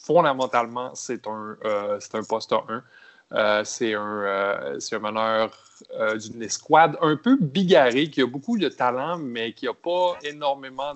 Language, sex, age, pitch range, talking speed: French, male, 20-39, 115-160 Hz, 150 wpm